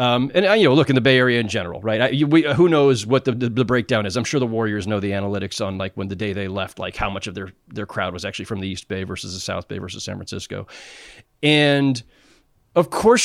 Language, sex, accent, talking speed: English, male, American, 265 wpm